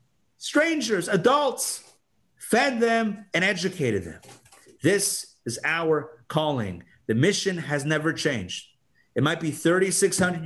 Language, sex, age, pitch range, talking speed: English, male, 30-49, 125-175 Hz, 115 wpm